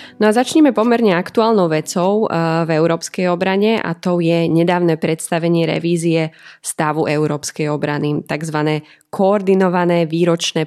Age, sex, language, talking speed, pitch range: 20-39, female, Slovak, 120 wpm, 160-180 Hz